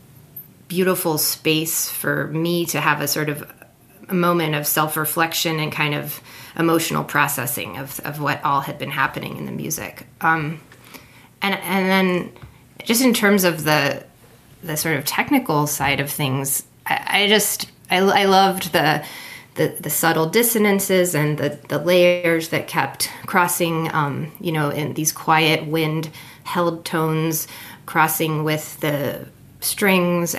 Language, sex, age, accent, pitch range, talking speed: English, female, 30-49, American, 150-175 Hz, 150 wpm